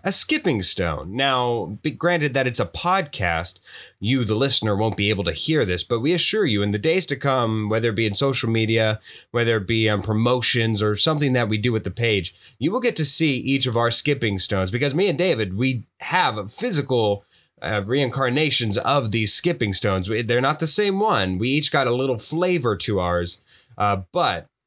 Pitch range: 110-145 Hz